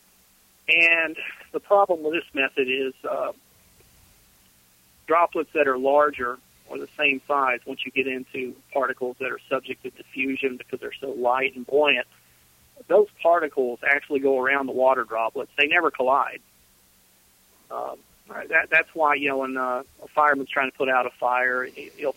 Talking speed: 165 wpm